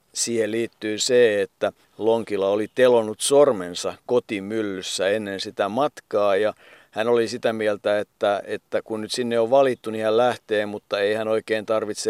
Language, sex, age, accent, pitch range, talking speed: Finnish, male, 50-69, native, 110-140 Hz, 160 wpm